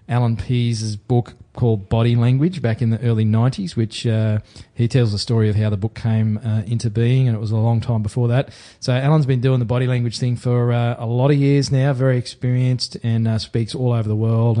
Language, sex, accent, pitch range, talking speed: English, male, Australian, 115-130 Hz, 235 wpm